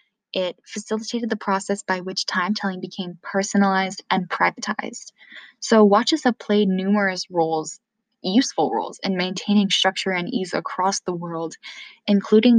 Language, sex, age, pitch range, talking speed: English, female, 10-29, 180-215 Hz, 135 wpm